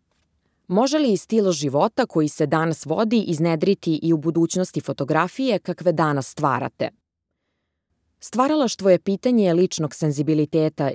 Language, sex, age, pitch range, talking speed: English, female, 20-39, 140-185 Hz, 115 wpm